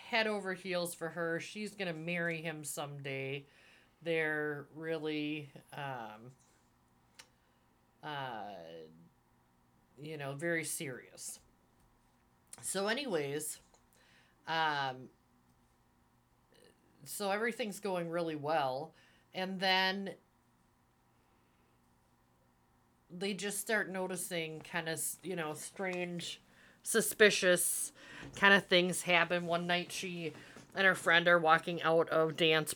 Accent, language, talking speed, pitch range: American, English, 100 wpm, 110-175 Hz